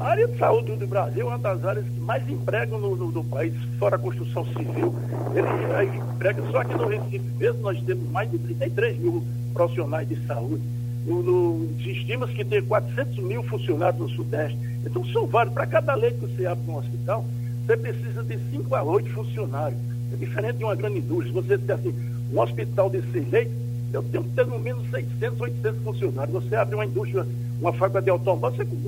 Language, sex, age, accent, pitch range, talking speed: Portuguese, male, 60-79, Brazilian, 115-125 Hz, 200 wpm